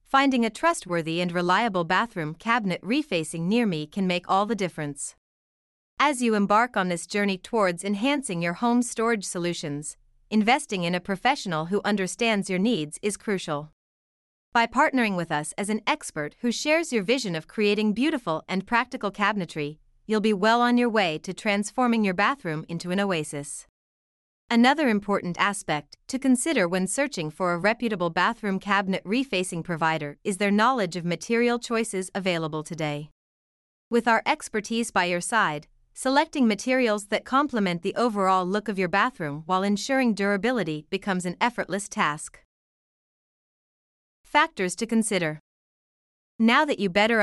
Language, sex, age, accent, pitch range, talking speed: English, female, 30-49, American, 175-230 Hz, 150 wpm